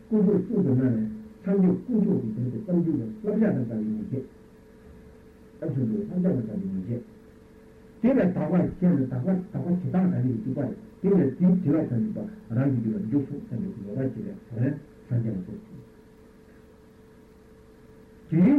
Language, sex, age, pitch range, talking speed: Italian, male, 60-79, 130-215 Hz, 35 wpm